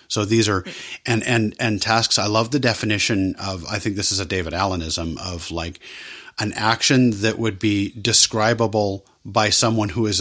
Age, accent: 50-69, American